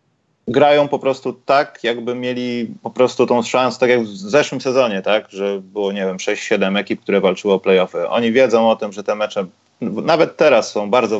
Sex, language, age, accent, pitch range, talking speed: male, Polish, 30-49, native, 110-130 Hz, 190 wpm